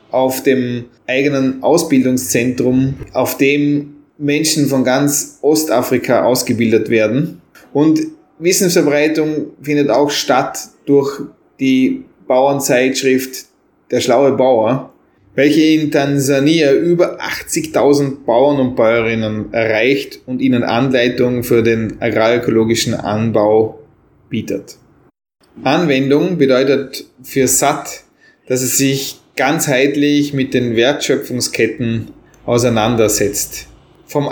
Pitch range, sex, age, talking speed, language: 125-150 Hz, male, 20-39, 95 wpm, German